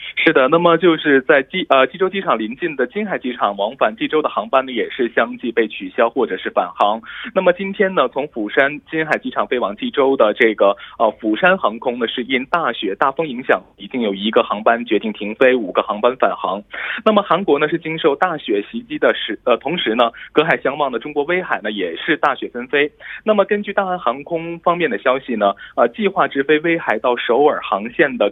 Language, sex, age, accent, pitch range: Korean, male, 20-39, Chinese, 135-215 Hz